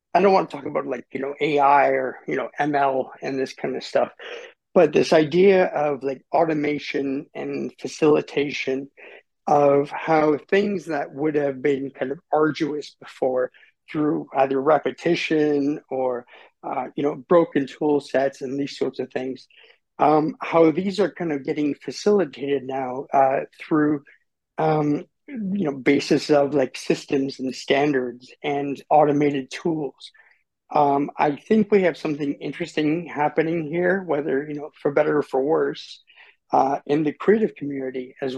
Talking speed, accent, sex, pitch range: 155 wpm, American, male, 135-160 Hz